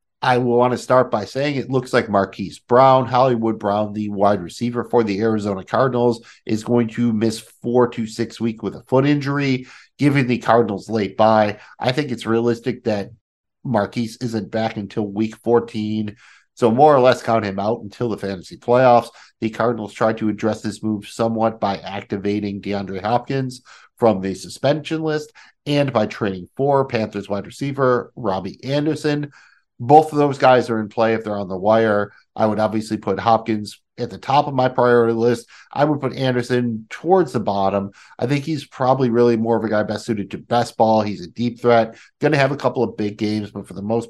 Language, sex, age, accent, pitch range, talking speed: English, male, 50-69, American, 105-125 Hz, 195 wpm